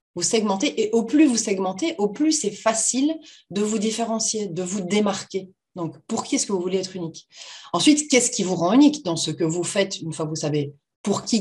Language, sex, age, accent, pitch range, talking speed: French, female, 30-49, French, 165-230 Hz, 230 wpm